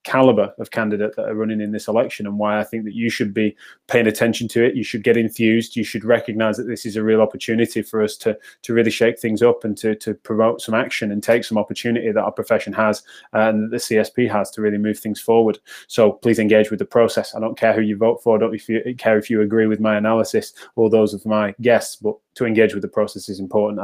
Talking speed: 250 wpm